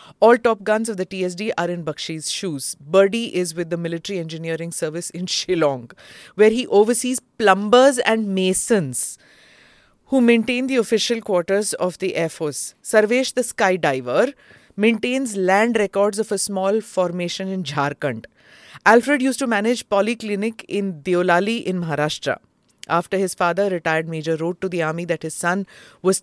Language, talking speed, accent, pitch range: English, 160 wpm, Indian, 165-210 Hz